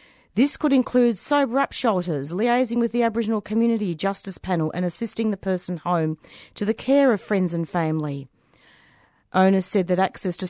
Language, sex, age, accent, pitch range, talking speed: English, female, 40-59, Australian, 170-215 Hz, 170 wpm